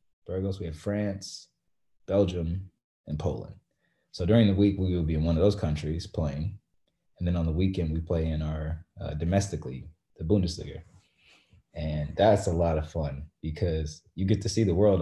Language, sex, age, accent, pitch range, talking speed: English, male, 20-39, American, 80-95 Hz, 185 wpm